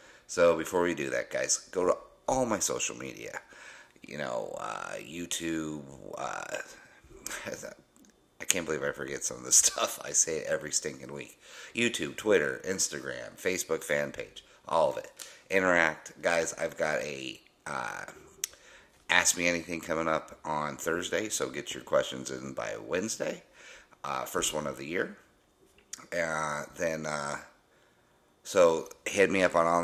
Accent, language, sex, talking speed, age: American, English, male, 155 wpm, 30-49